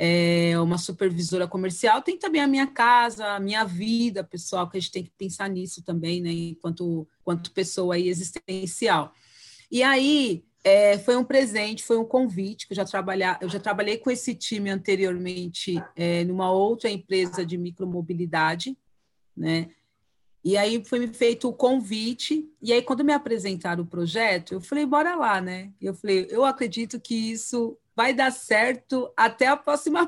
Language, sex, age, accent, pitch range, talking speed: Portuguese, female, 40-59, Brazilian, 180-240 Hz, 170 wpm